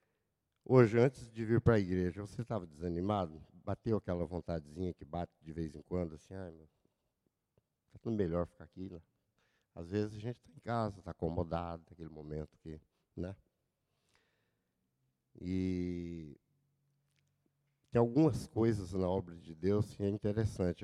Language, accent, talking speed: Portuguese, Brazilian, 155 wpm